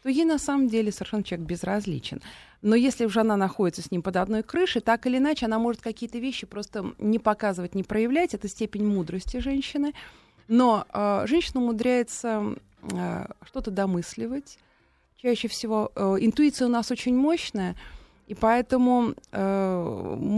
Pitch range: 185-235 Hz